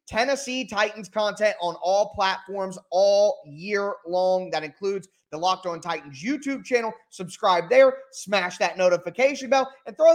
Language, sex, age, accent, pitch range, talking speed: English, male, 20-39, American, 180-235 Hz, 150 wpm